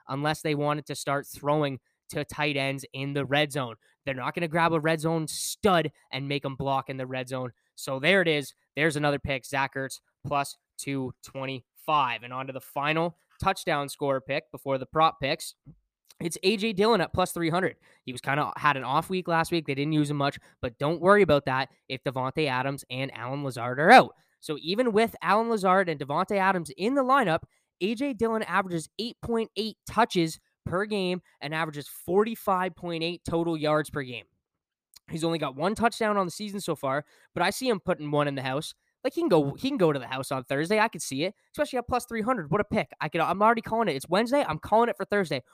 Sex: male